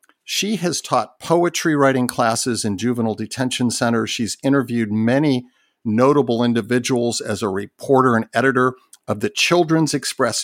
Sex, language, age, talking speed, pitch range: male, English, 50-69, 140 wpm, 115-135 Hz